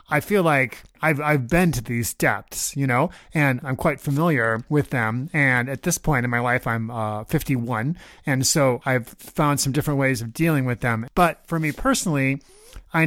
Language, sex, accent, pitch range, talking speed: English, male, American, 130-160 Hz, 200 wpm